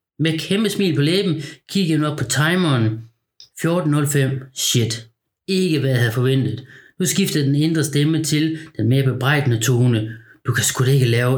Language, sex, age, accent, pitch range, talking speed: Danish, male, 30-49, native, 120-155 Hz, 180 wpm